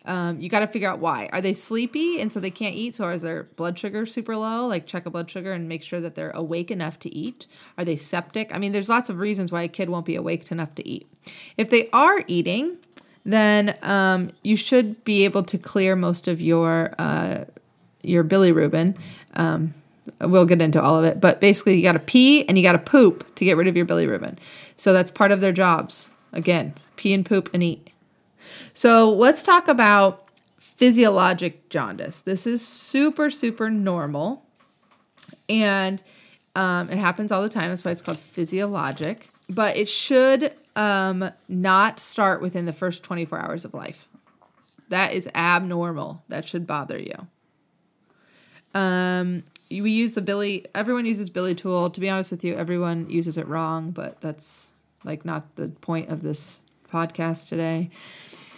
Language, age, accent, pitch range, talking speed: English, 30-49, American, 170-210 Hz, 185 wpm